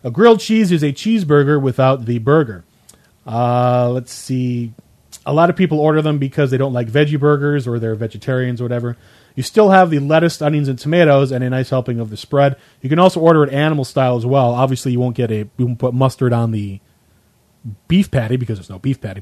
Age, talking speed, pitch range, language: 30-49, 210 wpm, 125-155 Hz, English